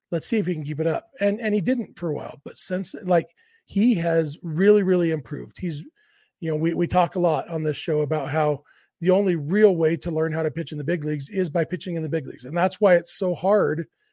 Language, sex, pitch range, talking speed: English, male, 160-195 Hz, 265 wpm